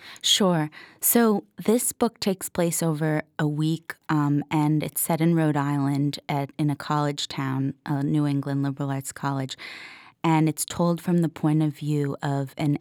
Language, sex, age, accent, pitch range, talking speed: English, female, 20-39, American, 140-150 Hz, 175 wpm